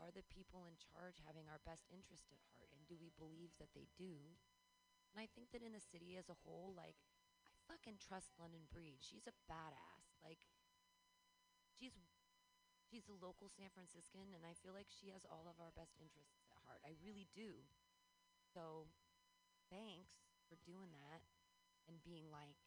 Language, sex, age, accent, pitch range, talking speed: English, female, 30-49, American, 160-230 Hz, 185 wpm